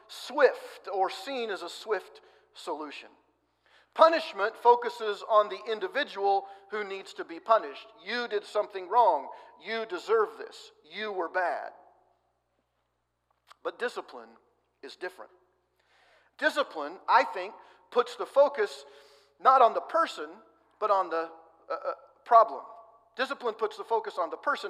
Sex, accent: male, American